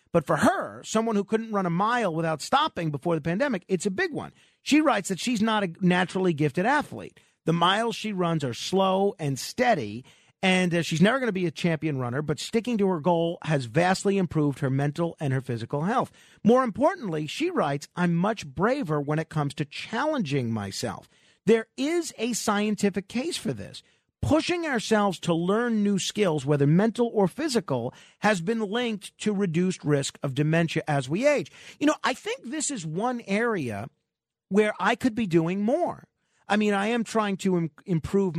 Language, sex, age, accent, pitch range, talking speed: English, male, 50-69, American, 155-225 Hz, 190 wpm